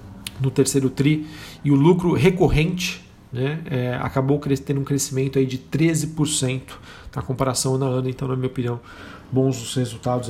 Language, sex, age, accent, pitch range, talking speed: Portuguese, male, 40-59, Brazilian, 125-145 Hz, 150 wpm